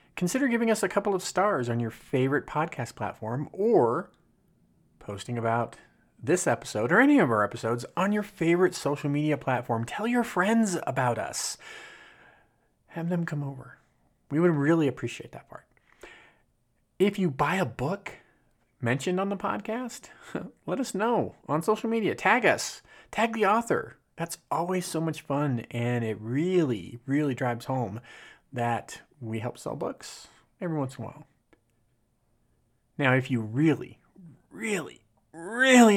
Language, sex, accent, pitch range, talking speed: English, male, American, 120-170 Hz, 150 wpm